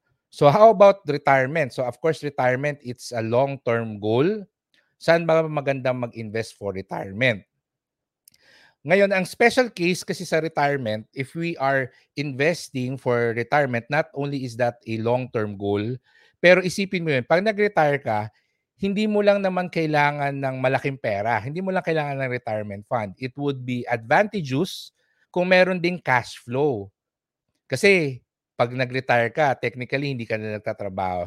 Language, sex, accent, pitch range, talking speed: English, male, Filipino, 120-160 Hz, 150 wpm